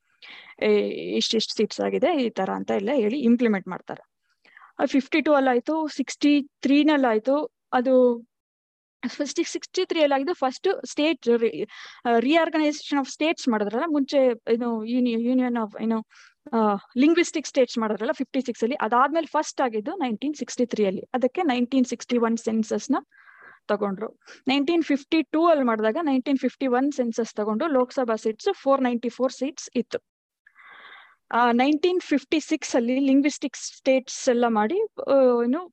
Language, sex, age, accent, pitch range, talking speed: Kannada, female, 20-39, native, 230-290 Hz, 120 wpm